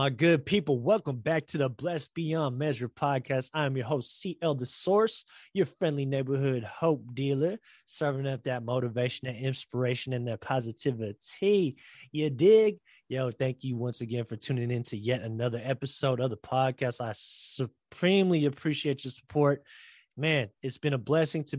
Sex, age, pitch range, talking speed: male, 20-39, 130-155 Hz, 165 wpm